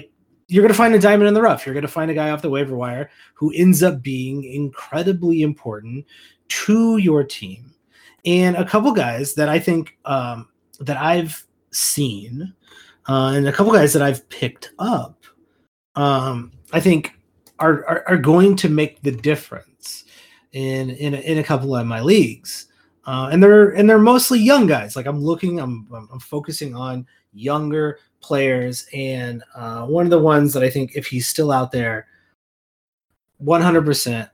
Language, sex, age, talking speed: English, male, 30-49, 170 wpm